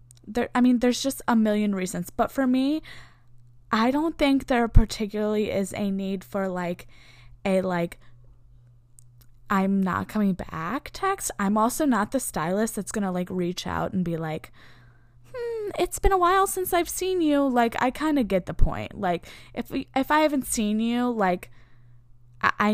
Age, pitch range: 10-29, 165-250 Hz